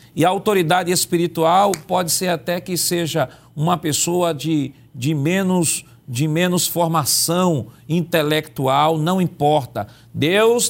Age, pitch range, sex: 40-59, 150-185 Hz, male